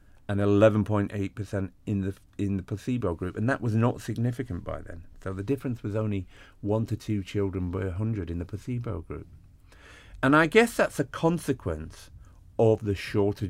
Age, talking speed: 50-69, 175 wpm